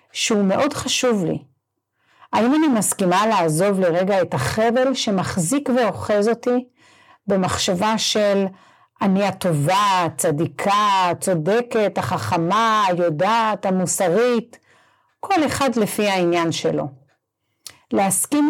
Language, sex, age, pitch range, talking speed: Hebrew, female, 50-69, 180-255 Hz, 95 wpm